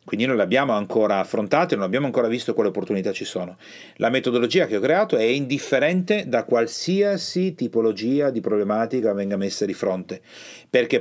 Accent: native